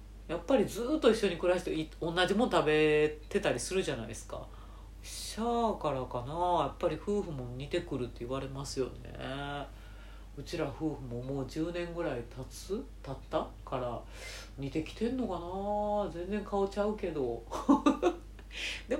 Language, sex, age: Japanese, female, 40-59